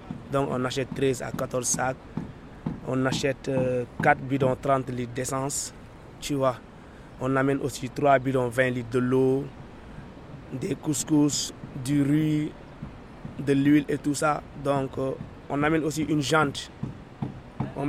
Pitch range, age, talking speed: 130-145 Hz, 20-39, 145 wpm